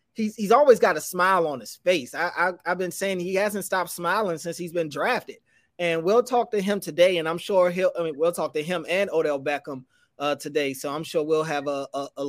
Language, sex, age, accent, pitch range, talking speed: English, male, 20-39, American, 155-185 Hz, 260 wpm